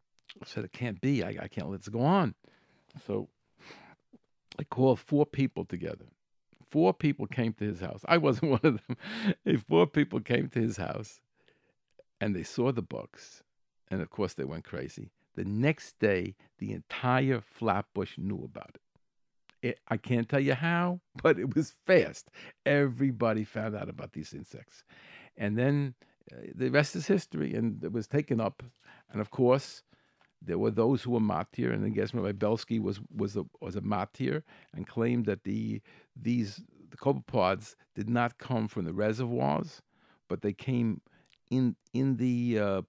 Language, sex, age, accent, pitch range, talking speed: English, male, 60-79, American, 105-135 Hz, 170 wpm